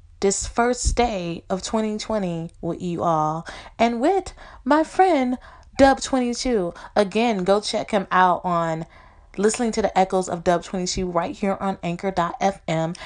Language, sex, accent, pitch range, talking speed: English, female, American, 165-220 Hz, 135 wpm